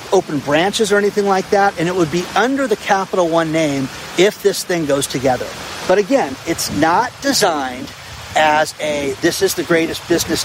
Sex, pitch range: male, 155-210 Hz